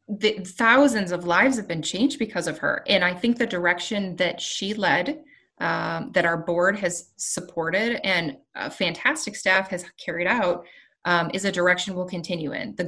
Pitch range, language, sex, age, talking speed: 175-205 Hz, English, female, 20-39, 180 wpm